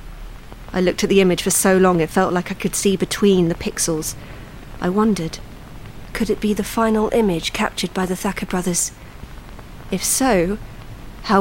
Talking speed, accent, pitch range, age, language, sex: 175 wpm, British, 150-200 Hz, 40-59, English, female